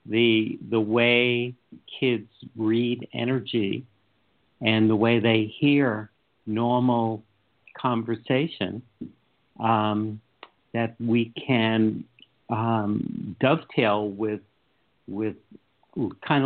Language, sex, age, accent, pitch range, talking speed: English, male, 60-79, American, 110-125 Hz, 80 wpm